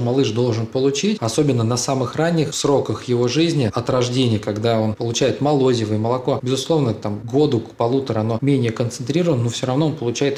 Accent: native